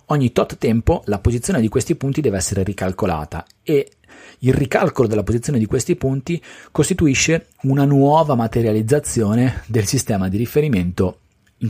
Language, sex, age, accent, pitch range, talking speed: Italian, male, 40-59, native, 95-120 Hz, 145 wpm